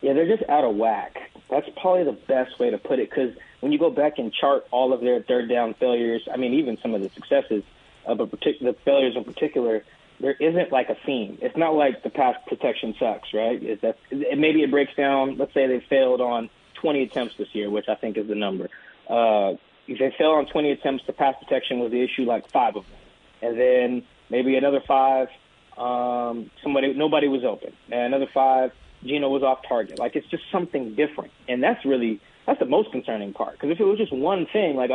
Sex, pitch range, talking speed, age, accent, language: male, 120-145 Hz, 215 wpm, 20-39, American, English